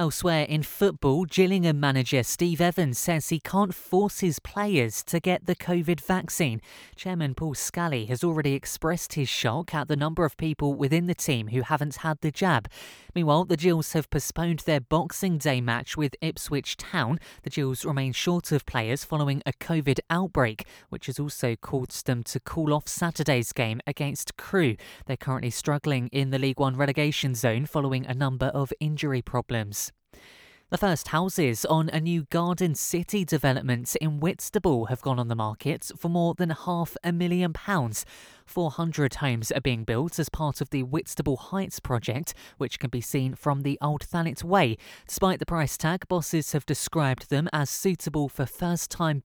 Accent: British